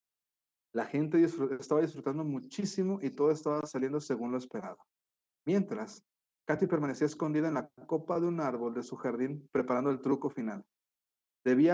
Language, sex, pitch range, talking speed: Spanish, male, 125-150 Hz, 160 wpm